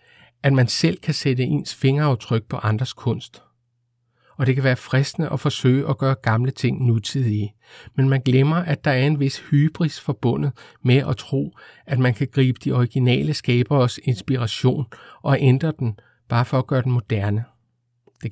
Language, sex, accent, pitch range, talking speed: Danish, male, native, 120-140 Hz, 175 wpm